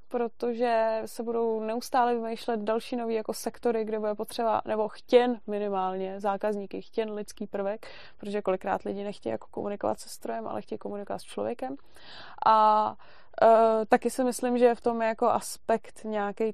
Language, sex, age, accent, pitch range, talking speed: Czech, female, 20-39, native, 190-220 Hz, 160 wpm